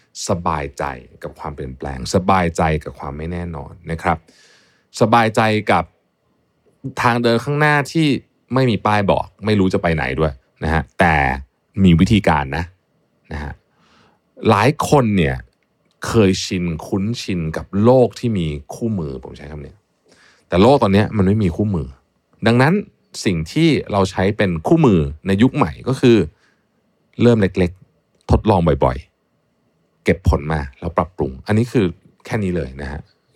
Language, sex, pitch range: Thai, male, 80-115 Hz